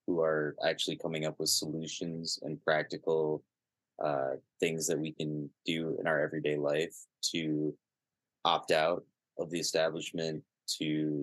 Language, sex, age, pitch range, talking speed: English, male, 20-39, 75-80 Hz, 140 wpm